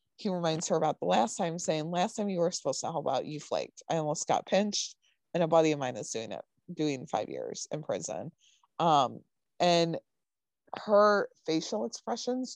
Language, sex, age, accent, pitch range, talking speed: English, female, 20-39, American, 155-185 Hz, 190 wpm